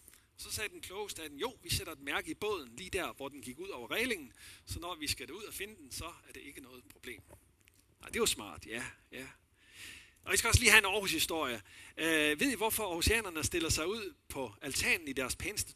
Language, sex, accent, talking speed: Danish, male, native, 240 wpm